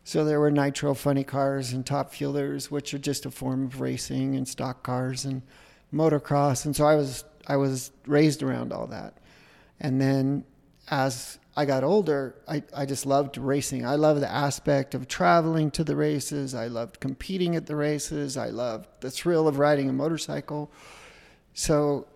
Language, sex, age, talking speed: English, male, 40-59, 180 wpm